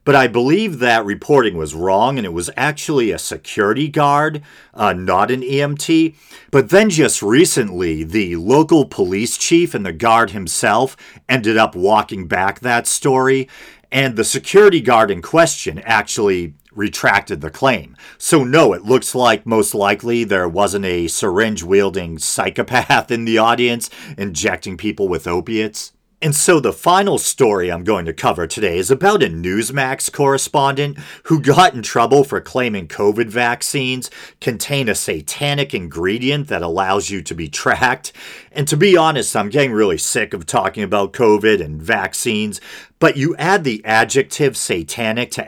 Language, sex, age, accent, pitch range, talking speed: English, male, 40-59, American, 105-145 Hz, 155 wpm